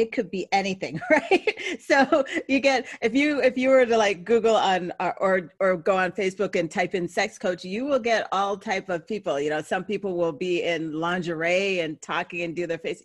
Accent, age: American, 40-59